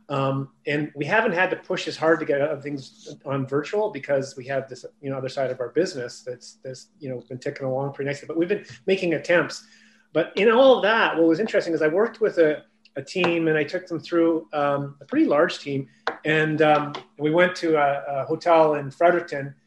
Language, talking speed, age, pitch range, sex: English, 230 wpm, 30-49, 140-175 Hz, male